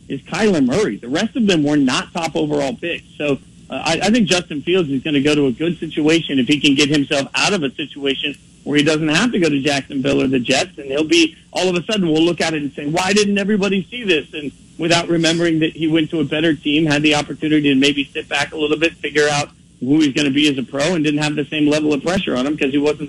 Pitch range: 145-175 Hz